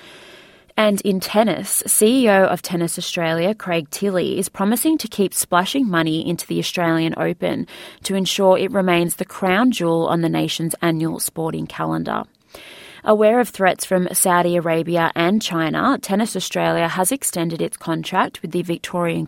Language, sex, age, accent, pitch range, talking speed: English, female, 20-39, Australian, 165-195 Hz, 155 wpm